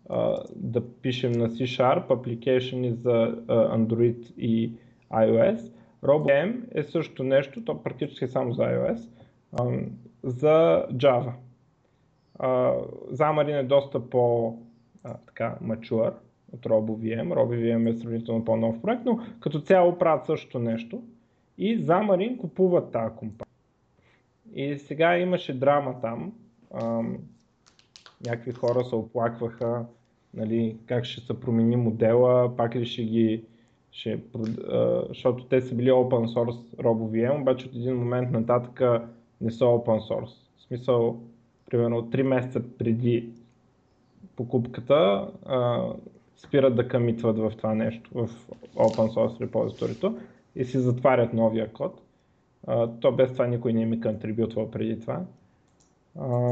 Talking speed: 130 wpm